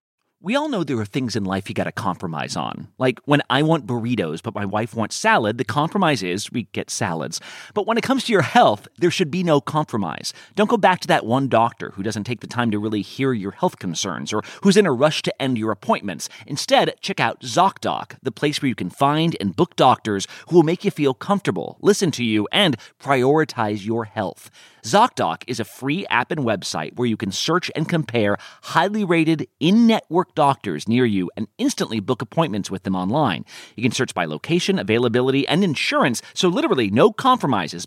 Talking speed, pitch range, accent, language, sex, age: 210 wpm, 110-165 Hz, American, English, male, 30-49